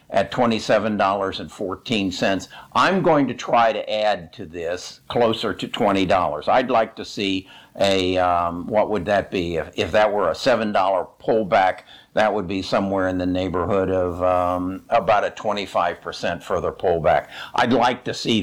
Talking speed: 155 wpm